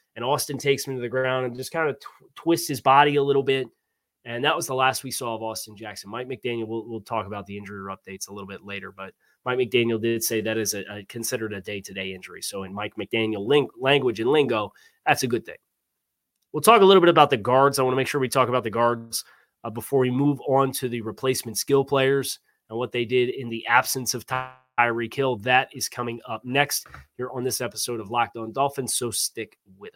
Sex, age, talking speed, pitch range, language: male, 20-39, 235 wpm, 115-145 Hz, English